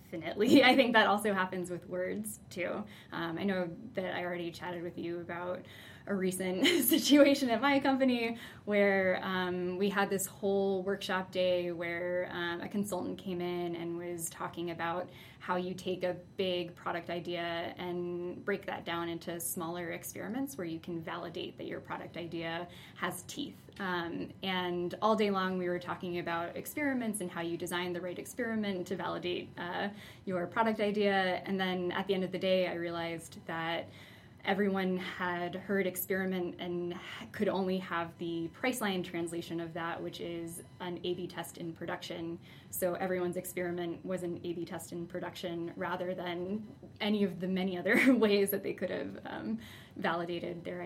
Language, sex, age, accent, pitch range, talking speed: English, female, 10-29, American, 175-195 Hz, 170 wpm